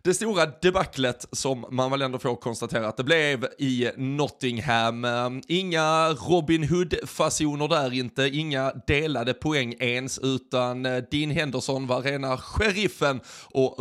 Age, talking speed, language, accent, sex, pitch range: 20-39, 130 wpm, Swedish, native, male, 120-145 Hz